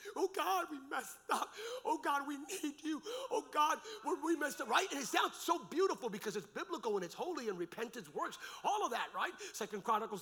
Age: 40-59